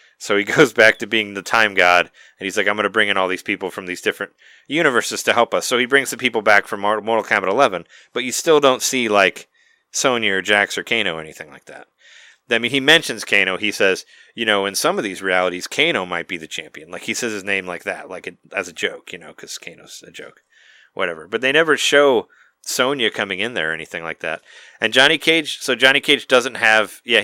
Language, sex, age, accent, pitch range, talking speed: English, male, 30-49, American, 100-125 Hz, 240 wpm